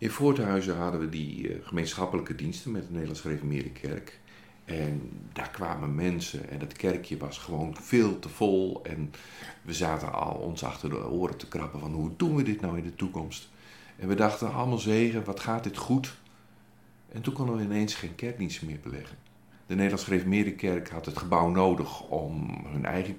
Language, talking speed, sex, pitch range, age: Dutch, 185 wpm, male, 85-120 Hz, 50-69